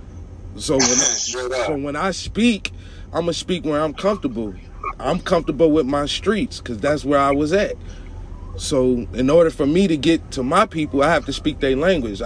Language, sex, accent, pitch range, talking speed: English, male, American, 120-165 Hz, 190 wpm